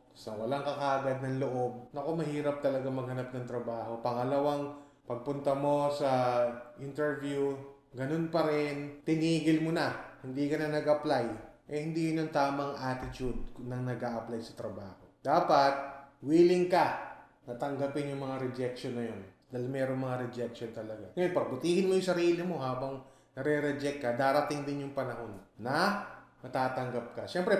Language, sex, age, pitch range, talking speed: English, male, 20-39, 125-150 Hz, 145 wpm